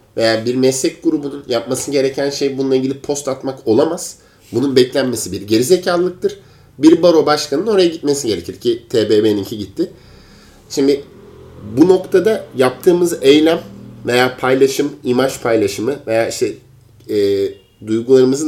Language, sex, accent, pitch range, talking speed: Turkish, male, native, 120-155 Hz, 125 wpm